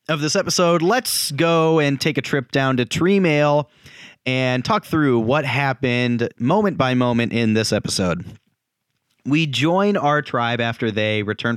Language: English